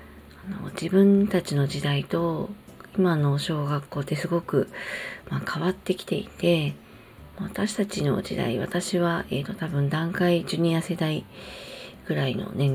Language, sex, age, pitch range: Japanese, female, 40-59, 145-190 Hz